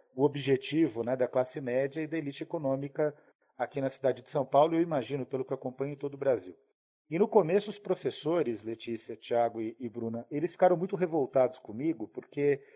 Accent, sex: Brazilian, male